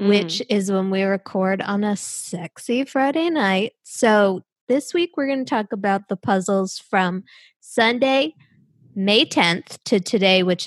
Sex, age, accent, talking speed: female, 20-39, American, 150 wpm